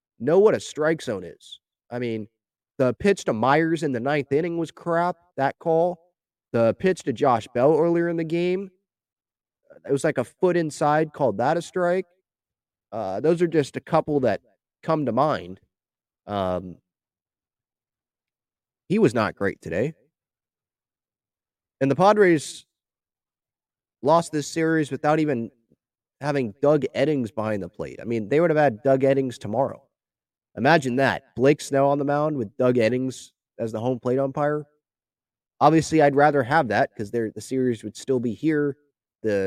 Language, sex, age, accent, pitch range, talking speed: English, male, 30-49, American, 115-155 Hz, 160 wpm